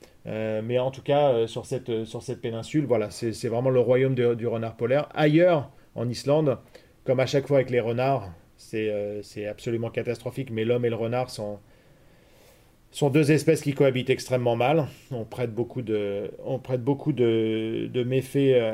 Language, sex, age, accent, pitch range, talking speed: French, male, 40-59, French, 115-130 Hz, 185 wpm